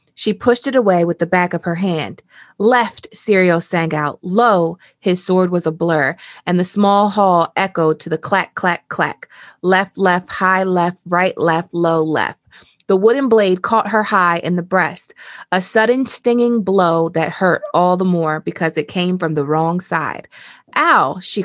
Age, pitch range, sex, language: 20-39, 165-205 Hz, female, English